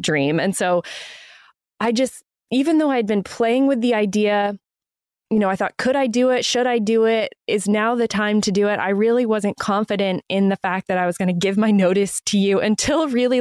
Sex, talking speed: female, 230 wpm